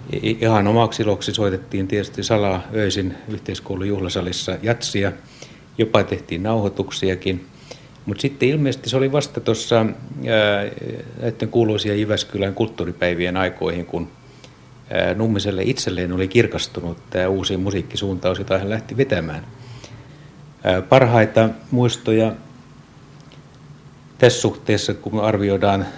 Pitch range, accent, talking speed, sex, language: 95-120 Hz, native, 100 wpm, male, Finnish